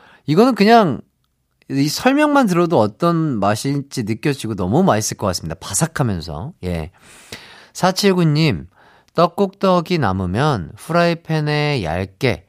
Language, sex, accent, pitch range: Korean, male, native, 105-175 Hz